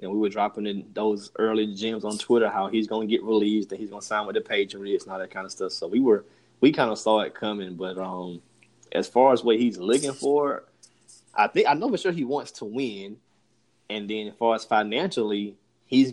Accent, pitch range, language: American, 105-130 Hz, English